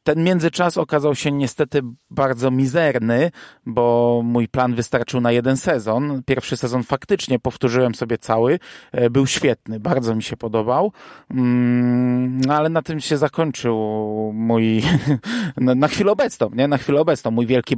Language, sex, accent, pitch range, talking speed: Polish, male, native, 120-140 Hz, 140 wpm